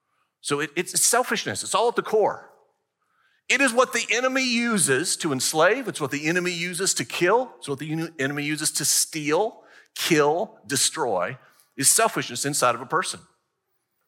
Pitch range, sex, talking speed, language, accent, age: 145-220 Hz, male, 160 wpm, English, American, 40-59